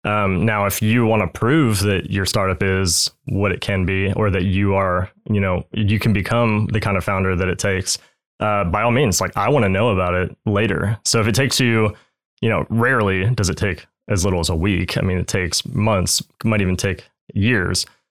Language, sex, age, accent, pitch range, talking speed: English, male, 20-39, American, 95-115 Hz, 225 wpm